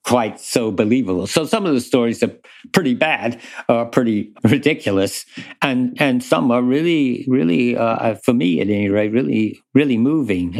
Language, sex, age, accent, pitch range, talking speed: English, male, 60-79, American, 105-130 Hz, 170 wpm